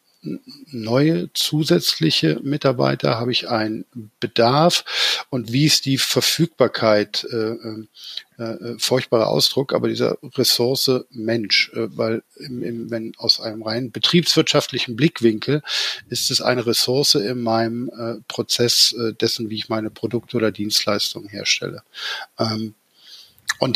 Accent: German